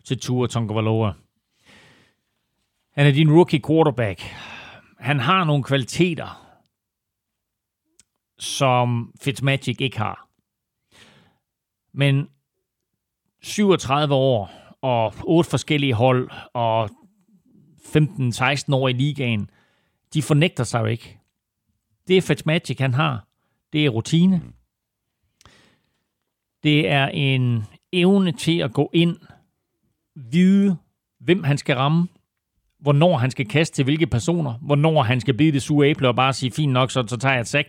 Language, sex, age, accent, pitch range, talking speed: Danish, male, 40-59, native, 120-150 Hz, 125 wpm